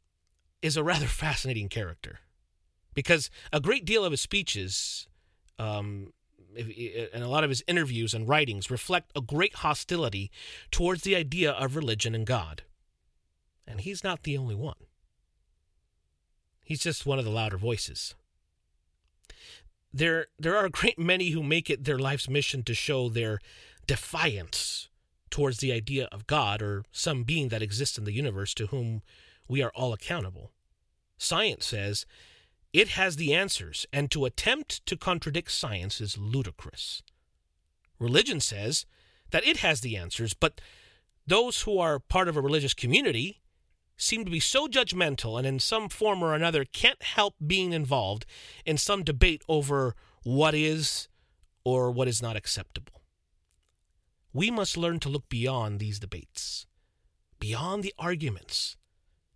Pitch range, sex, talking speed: 95-155 Hz, male, 150 wpm